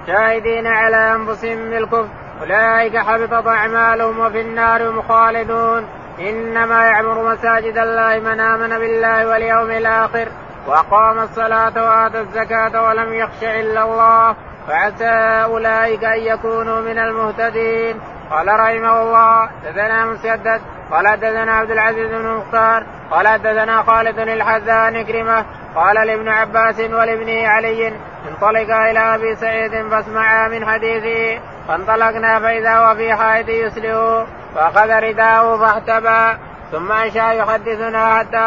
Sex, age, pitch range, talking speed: male, 20-39, 220-225 Hz, 110 wpm